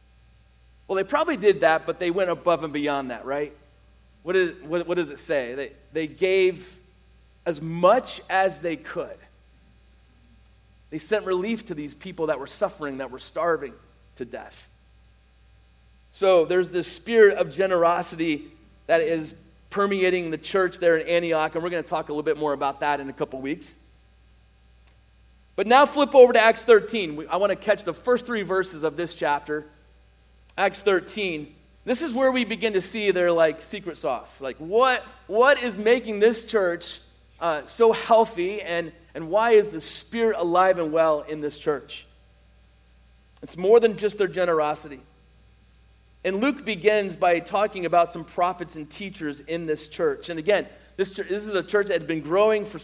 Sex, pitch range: male, 150-205 Hz